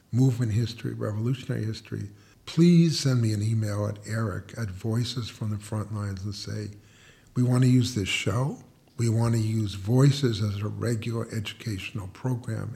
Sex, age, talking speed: male, 50-69, 165 wpm